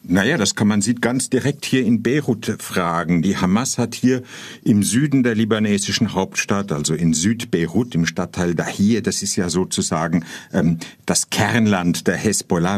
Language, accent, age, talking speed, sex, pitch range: German, German, 50-69, 165 wpm, male, 95-115 Hz